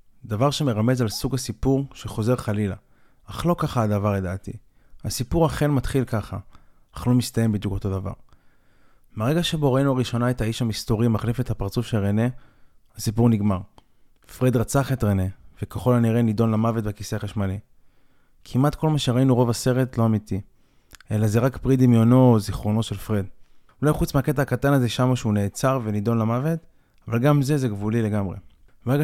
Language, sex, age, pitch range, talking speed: Hebrew, male, 20-39, 105-130 Hz, 165 wpm